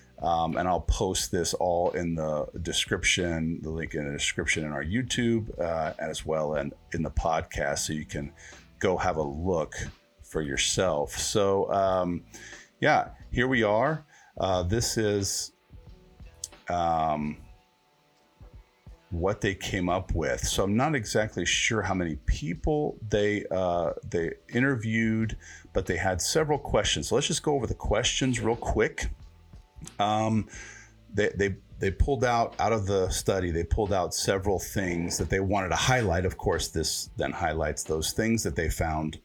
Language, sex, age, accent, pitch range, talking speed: English, male, 40-59, American, 80-110 Hz, 160 wpm